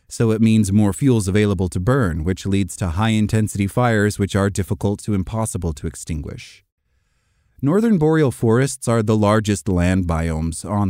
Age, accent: 30-49, American